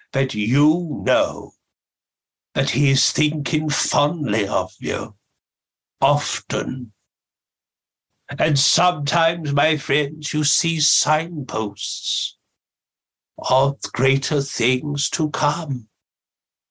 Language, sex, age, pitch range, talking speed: English, male, 60-79, 125-150 Hz, 85 wpm